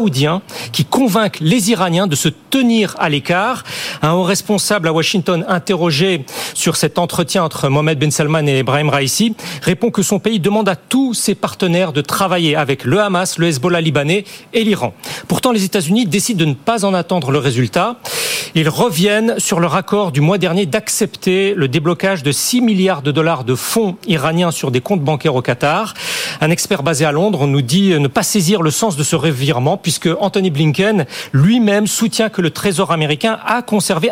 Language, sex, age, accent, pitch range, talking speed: French, male, 40-59, French, 160-210 Hz, 190 wpm